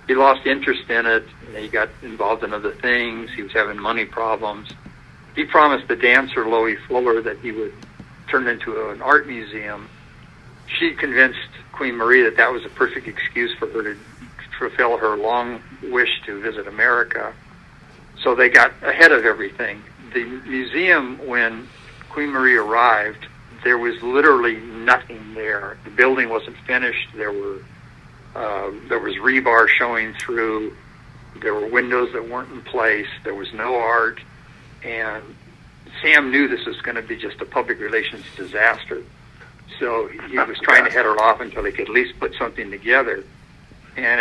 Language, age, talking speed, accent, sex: English, 60-79, 165 wpm, American, male